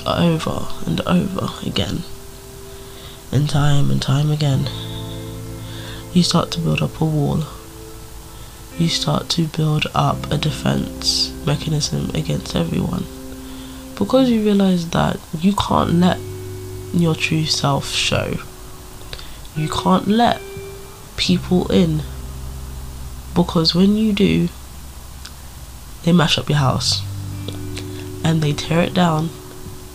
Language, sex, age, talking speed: English, female, 20-39, 110 wpm